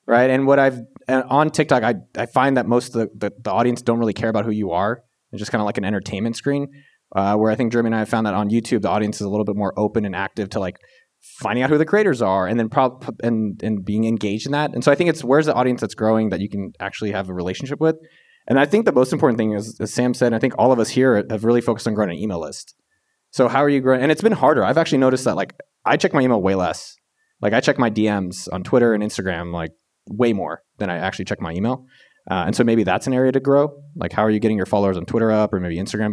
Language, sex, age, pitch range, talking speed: English, male, 20-39, 100-130 Hz, 290 wpm